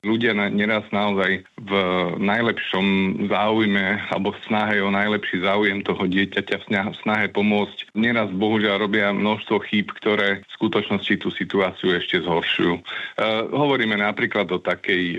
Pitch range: 95-105 Hz